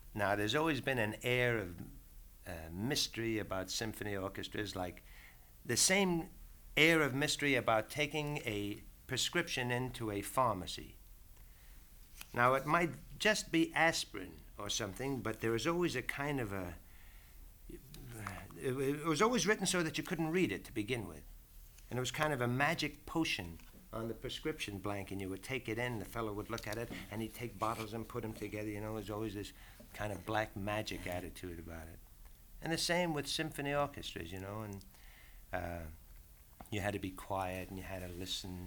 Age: 60-79